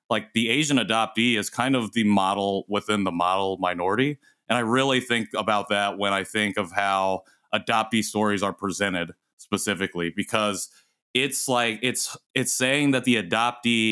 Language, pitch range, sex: English, 100-125 Hz, male